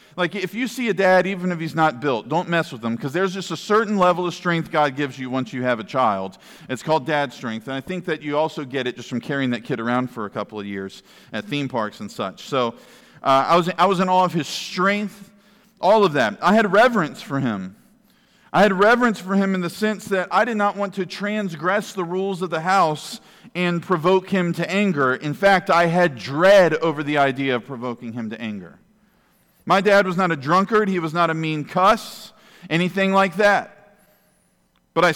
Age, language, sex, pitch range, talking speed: 40-59, English, male, 155-200 Hz, 225 wpm